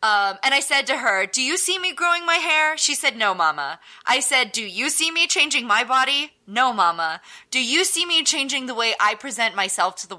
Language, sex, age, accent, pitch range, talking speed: English, female, 20-39, American, 215-320 Hz, 235 wpm